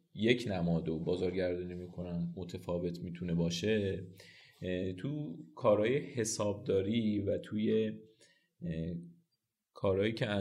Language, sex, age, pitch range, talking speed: Persian, male, 30-49, 90-105 Hz, 80 wpm